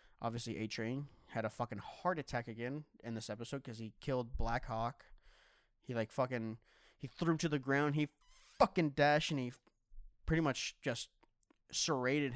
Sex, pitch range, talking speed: male, 115-145 Hz, 165 wpm